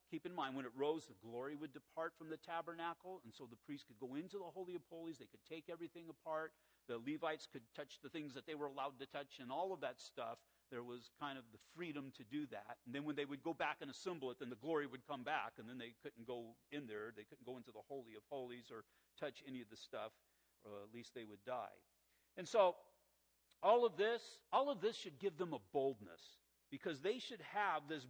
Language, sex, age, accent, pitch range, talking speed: English, male, 50-69, American, 135-180 Hz, 250 wpm